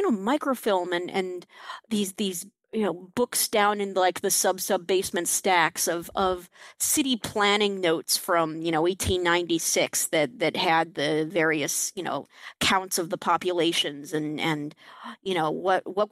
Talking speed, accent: 160 wpm, American